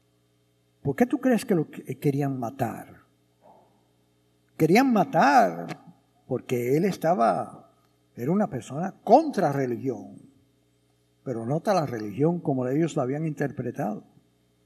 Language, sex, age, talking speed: English, male, 60-79, 110 wpm